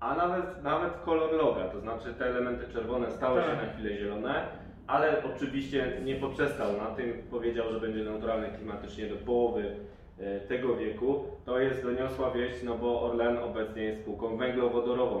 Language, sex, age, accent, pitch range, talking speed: Polish, male, 20-39, native, 110-130 Hz, 160 wpm